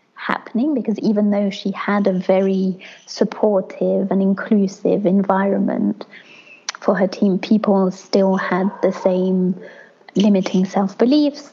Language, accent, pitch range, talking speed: English, British, 195-230 Hz, 115 wpm